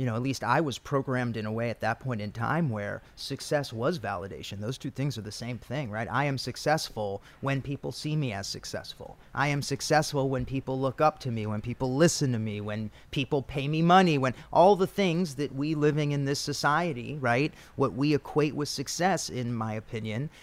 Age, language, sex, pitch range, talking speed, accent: 30-49, English, male, 120-150 Hz, 215 wpm, American